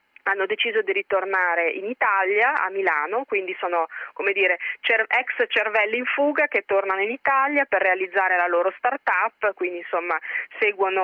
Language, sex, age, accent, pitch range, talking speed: Italian, female, 30-49, native, 180-240 Hz, 150 wpm